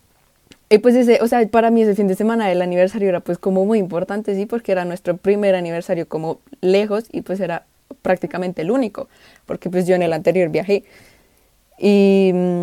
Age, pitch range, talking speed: 20-39, 180-220 Hz, 190 wpm